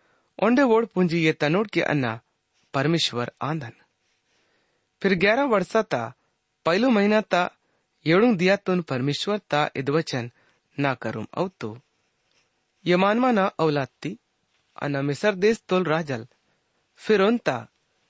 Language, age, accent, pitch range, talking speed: English, 30-49, Indian, 140-195 Hz, 100 wpm